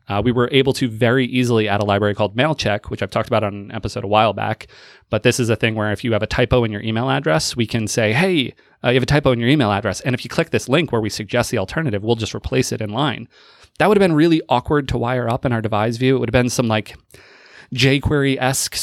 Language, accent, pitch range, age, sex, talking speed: English, American, 105-130 Hz, 30-49, male, 280 wpm